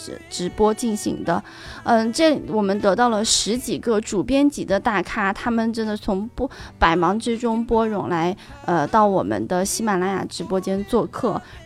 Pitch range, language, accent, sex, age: 205-265 Hz, Chinese, native, female, 20-39